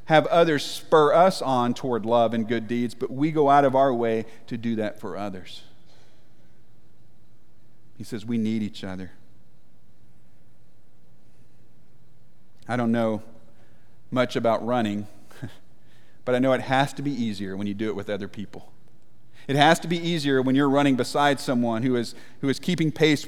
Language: English